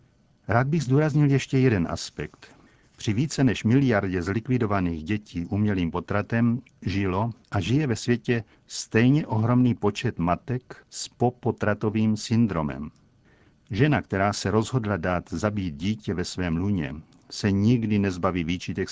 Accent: native